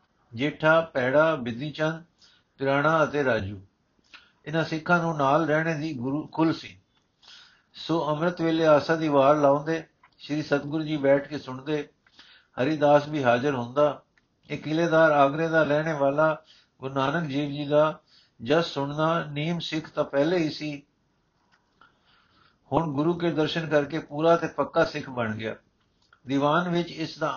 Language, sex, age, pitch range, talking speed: Punjabi, male, 60-79, 140-160 Hz, 140 wpm